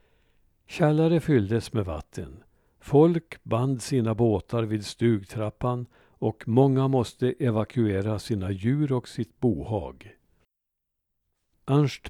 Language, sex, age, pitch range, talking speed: Swedish, male, 60-79, 110-135 Hz, 100 wpm